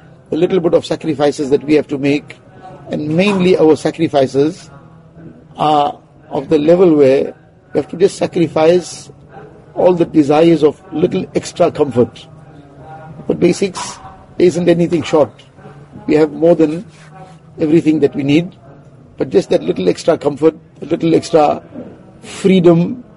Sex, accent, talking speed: male, Indian, 140 wpm